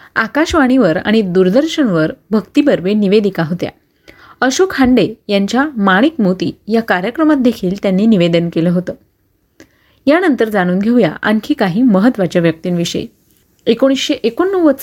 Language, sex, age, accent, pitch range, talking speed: Marathi, female, 30-49, native, 190-270 Hz, 105 wpm